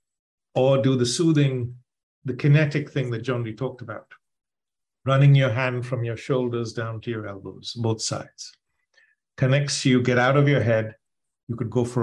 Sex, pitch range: male, 115-145 Hz